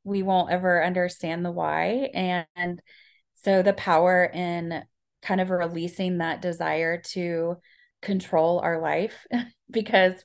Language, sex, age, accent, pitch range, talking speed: English, female, 20-39, American, 175-200 Hz, 125 wpm